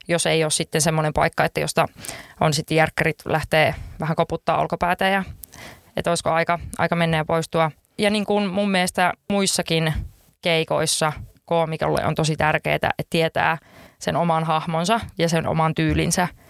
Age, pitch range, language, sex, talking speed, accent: 20-39, 155-175 Hz, Finnish, female, 155 wpm, native